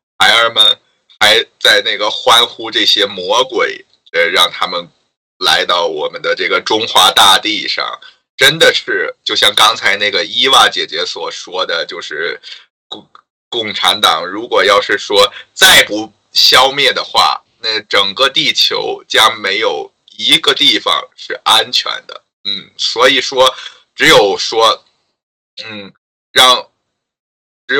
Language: Chinese